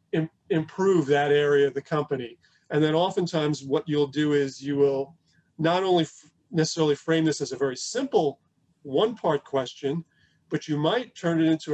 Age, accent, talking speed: 40-59, American, 170 wpm